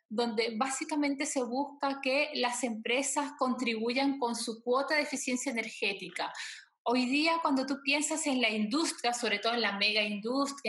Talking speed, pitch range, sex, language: 155 wpm, 225-275 Hz, female, Spanish